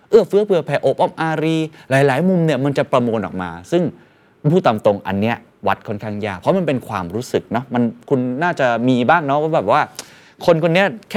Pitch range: 100-165 Hz